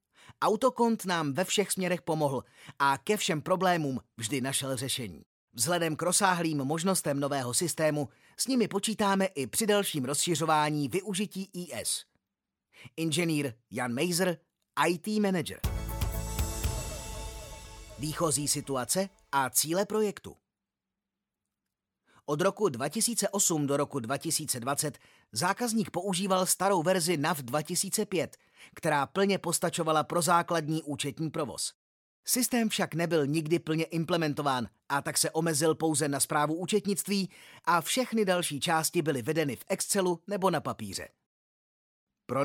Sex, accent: male, native